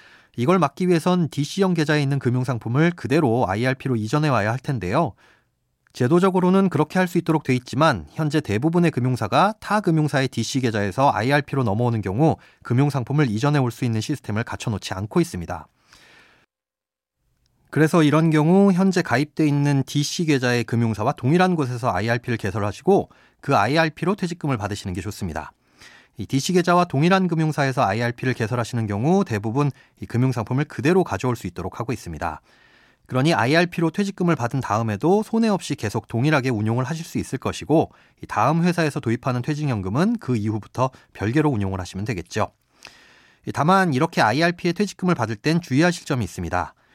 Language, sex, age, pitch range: Korean, male, 30-49, 115-165 Hz